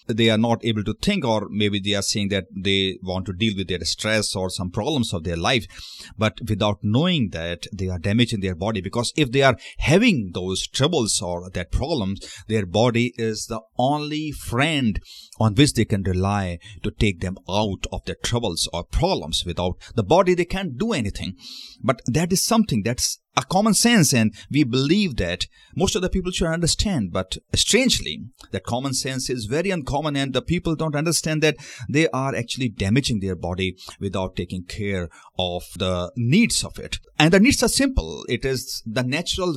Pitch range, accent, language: 95-150 Hz, native, Hindi